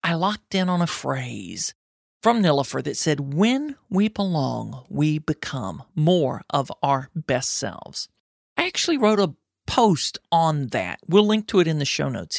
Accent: American